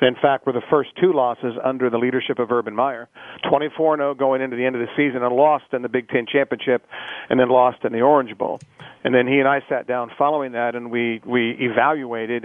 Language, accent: English, American